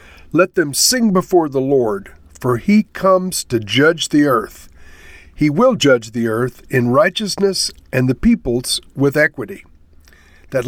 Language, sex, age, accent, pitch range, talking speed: English, male, 60-79, American, 115-150 Hz, 145 wpm